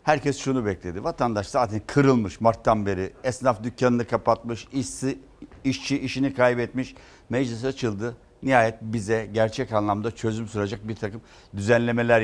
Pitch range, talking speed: 115-150 Hz, 125 wpm